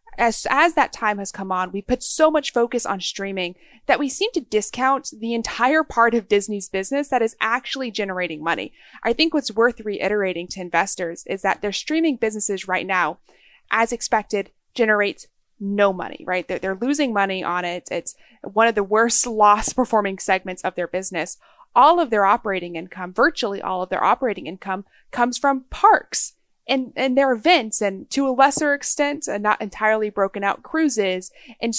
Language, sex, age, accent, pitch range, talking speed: English, female, 30-49, American, 200-275 Hz, 180 wpm